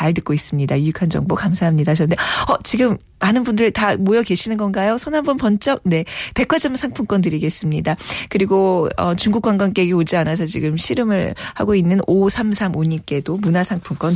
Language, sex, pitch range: Korean, female, 165-215 Hz